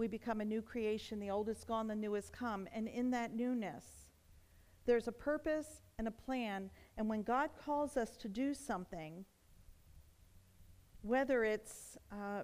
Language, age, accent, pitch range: English, 50-69, American, 175-235 Hz